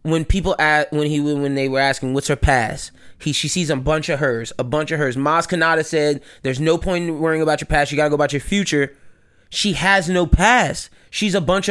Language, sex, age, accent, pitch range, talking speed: English, male, 20-39, American, 150-195 Hz, 240 wpm